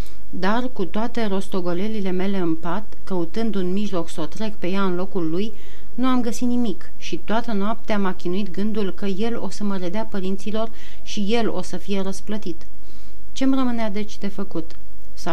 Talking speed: 185 wpm